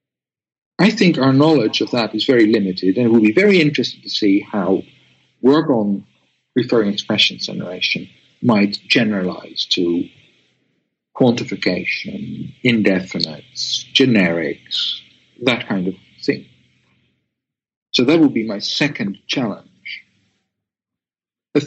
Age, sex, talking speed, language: 60-79, male, 115 wpm, English